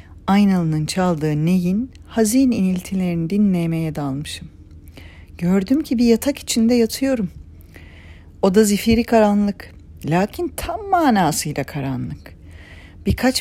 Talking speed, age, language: 95 wpm, 40-59, Turkish